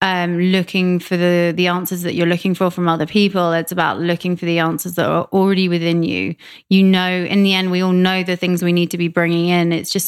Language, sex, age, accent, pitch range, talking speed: English, female, 20-39, British, 170-185 Hz, 250 wpm